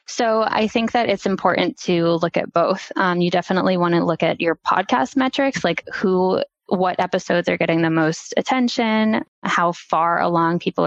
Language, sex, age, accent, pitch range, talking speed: English, female, 10-29, American, 170-190 Hz, 180 wpm